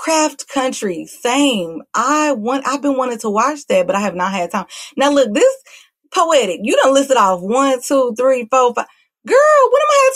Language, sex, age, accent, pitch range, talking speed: English, female, 30-49, American, 195-285 Hz, 205 wpm